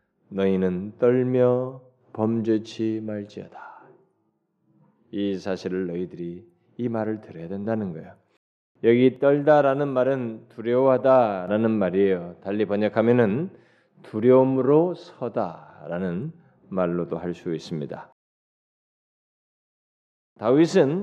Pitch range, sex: 110-175 Hz, male